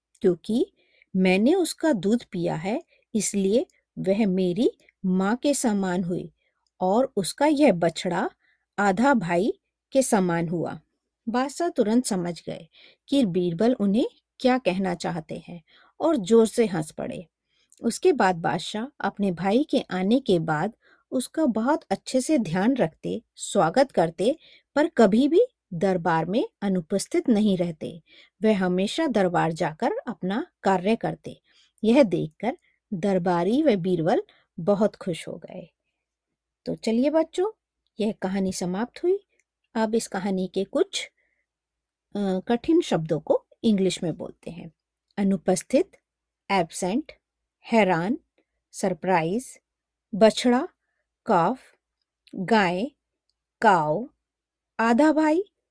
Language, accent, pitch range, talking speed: Hindi, native, 185-270 Hz, 115 wpm